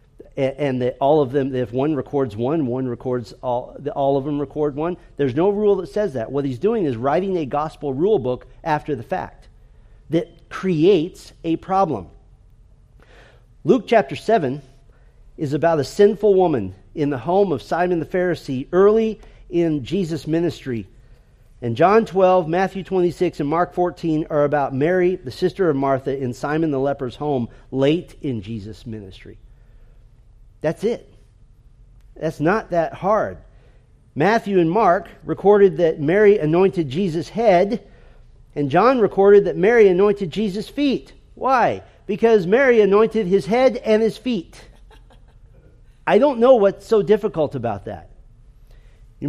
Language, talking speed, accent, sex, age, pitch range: English, 150 wpm, American, male, 40-59, 125-190 Hz